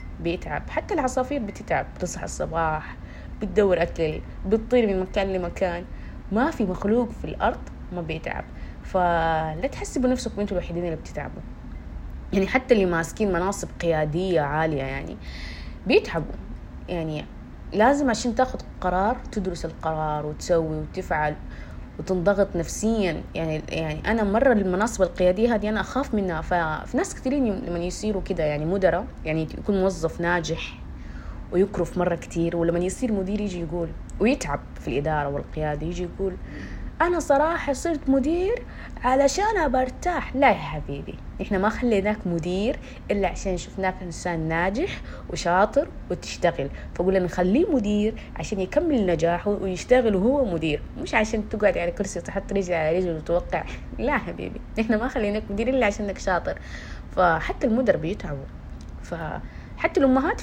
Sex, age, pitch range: female, 20-39, 165-225 Hz